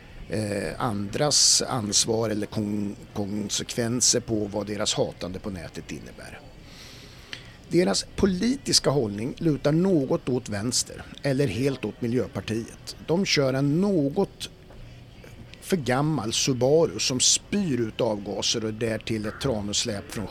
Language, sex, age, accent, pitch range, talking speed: Swedish, male, 50-69, native, 110-155 Hz, 110 wpm